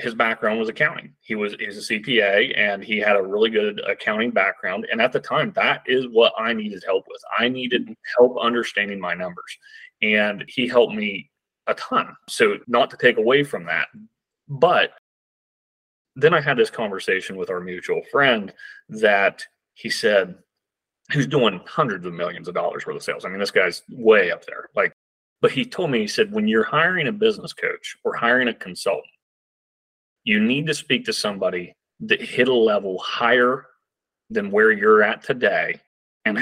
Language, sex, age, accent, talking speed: English, male, 30-49, American, 185 wpm